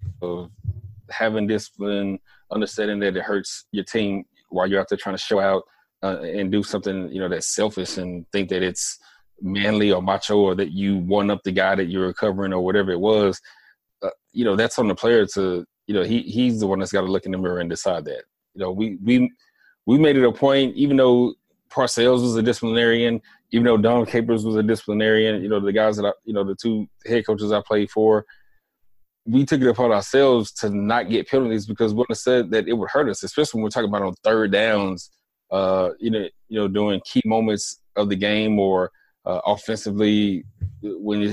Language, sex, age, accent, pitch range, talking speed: English, male, 20-39, American, 95-115 Hz, 215 wpm